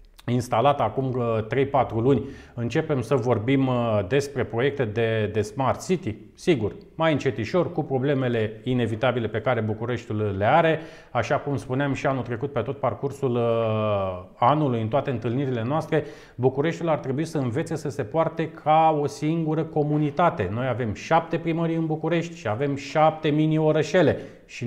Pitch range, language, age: 125-160 Hz, Romanian, 30-49